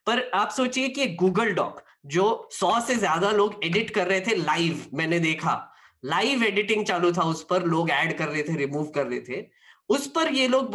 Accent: native